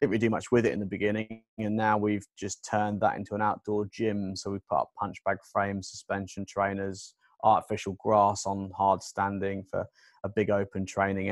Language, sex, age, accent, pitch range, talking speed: English, male, 20-39, British, 100-110 Hz, 200 wpm